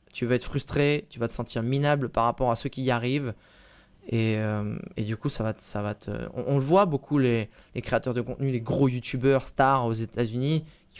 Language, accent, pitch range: French, French, 125-170 Hz